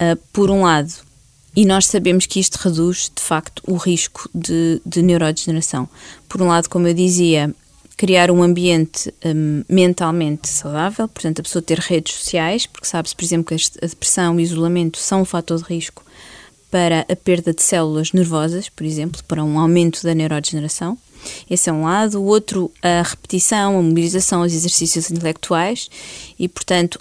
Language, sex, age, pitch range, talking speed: Portuguese, female, 20-39, 165-190 Hz, 170 wpm